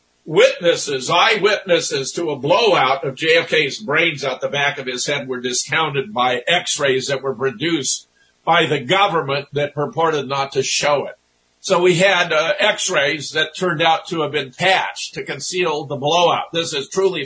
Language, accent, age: English, American, 50-69